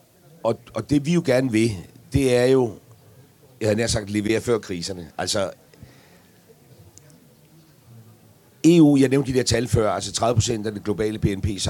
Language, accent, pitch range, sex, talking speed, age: Danish, native, 100-120 Hz, male, 155 wpm, 60-79